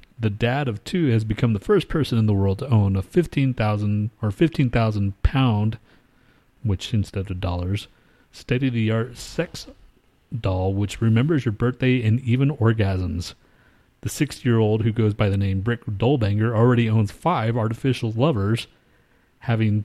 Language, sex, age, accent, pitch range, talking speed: English, male, 30-49, American, 105-130 Hz, 150 wpm